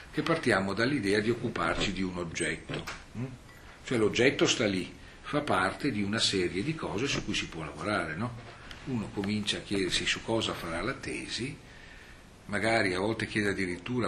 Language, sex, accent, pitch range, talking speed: Italian, male, native, 90-115 Hz, 165 wpm